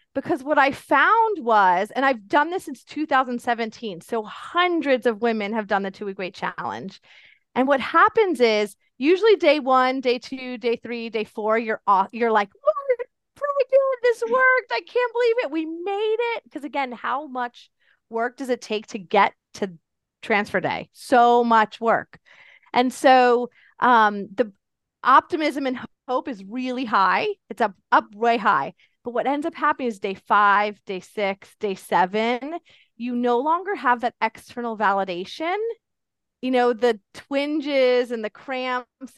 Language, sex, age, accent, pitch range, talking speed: English, female, 30-49, American, 220-295 Hz, 160 wpm